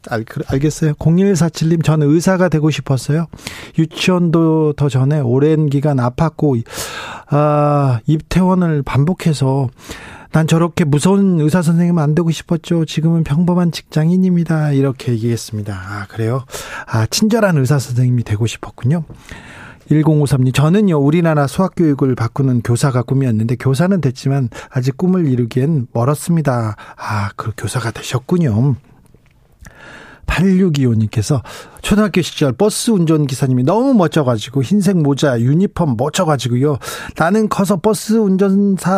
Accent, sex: native, male